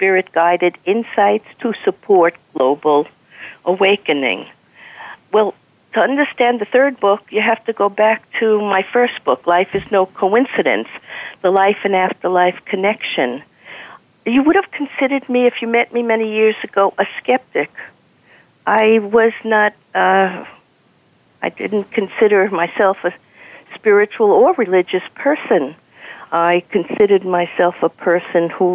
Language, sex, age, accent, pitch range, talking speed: English, female, 50-69, American, 175-225 Hz, 130 wpm